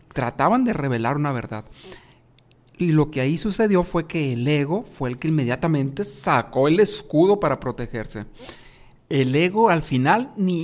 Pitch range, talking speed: 130-170 Hz, 160 wpm